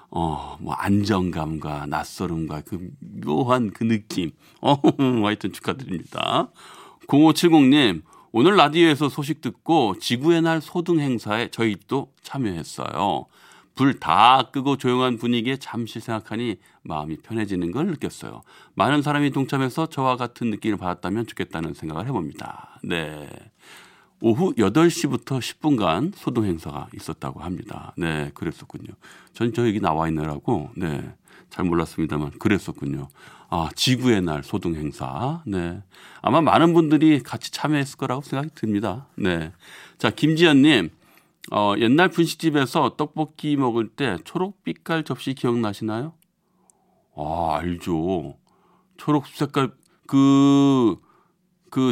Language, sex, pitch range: Korean, male, 105-155 Hz